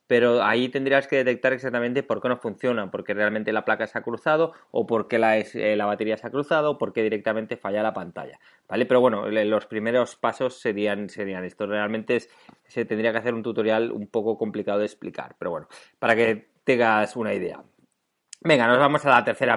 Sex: male